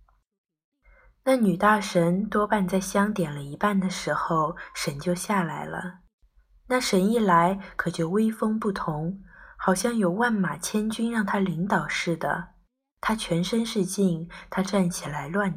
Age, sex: 20-39, female